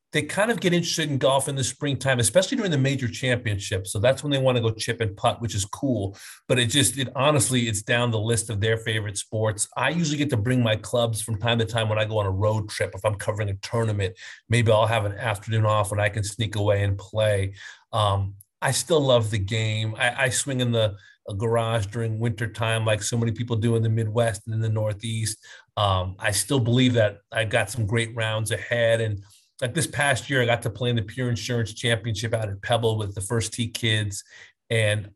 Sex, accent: male, American